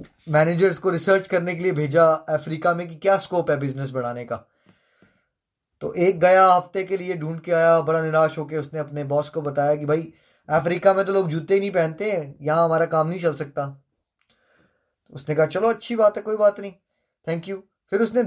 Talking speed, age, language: 205 wpm, 20-39, Hindi